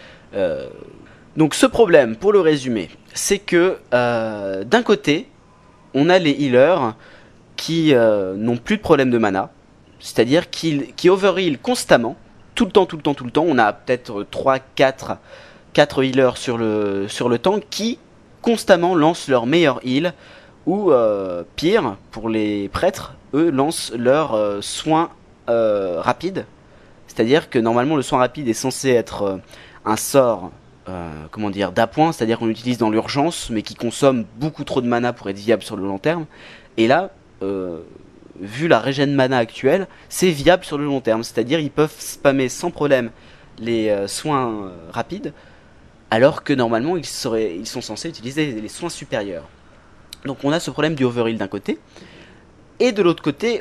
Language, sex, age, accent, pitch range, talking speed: French, male, 20-39, French, 110-160 Hz, 175 wpm